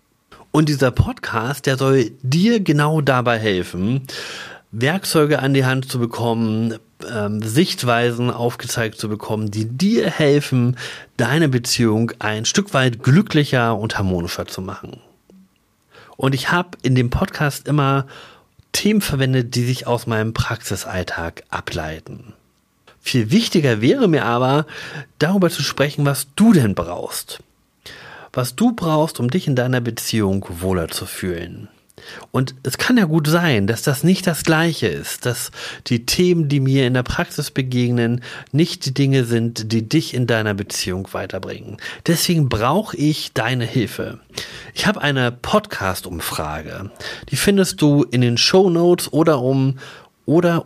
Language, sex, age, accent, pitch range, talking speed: German, male, 40-59, German, 115-150 Hz, 140 wpm